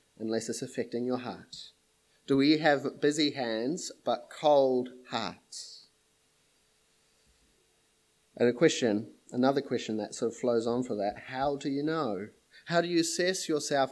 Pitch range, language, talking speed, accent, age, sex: 130-165 Hz, English, 145 wpm, Australian, 30-49, male